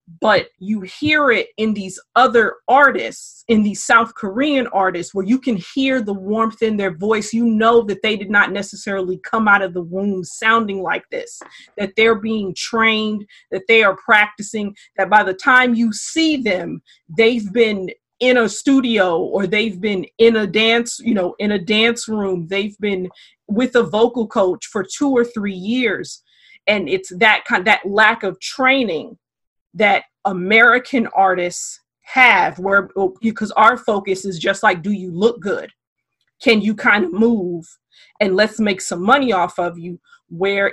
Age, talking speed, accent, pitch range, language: 30-49, 170 wpm, American, 190-230 Hz, English